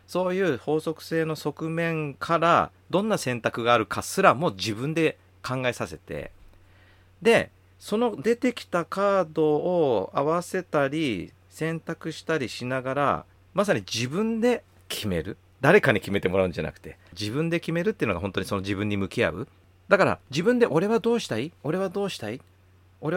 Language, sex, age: Japanese, male, 40-59